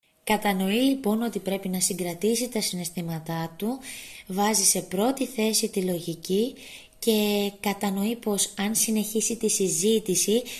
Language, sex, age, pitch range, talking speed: Greek, female, 20-39, 180-220 Hz, 125 wpm